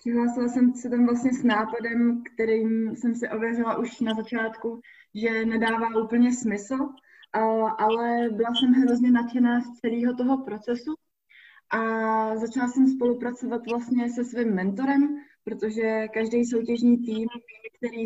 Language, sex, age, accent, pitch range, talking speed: Czech, female, 20-39, native, 220-250 Hz, 135 wpm